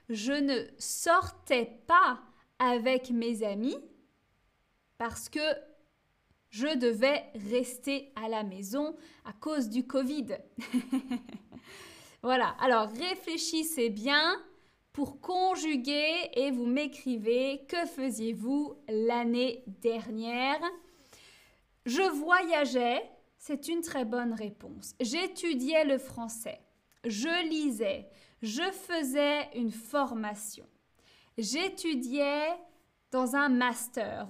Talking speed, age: 90 wpm, 20-39